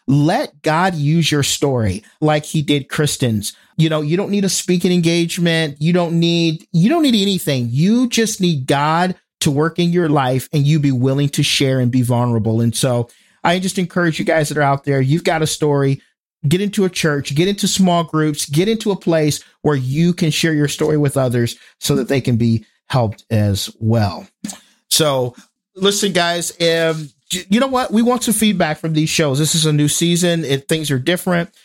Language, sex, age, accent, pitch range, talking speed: English, male, 50-69, American, 145-180 Hz, 205 wpm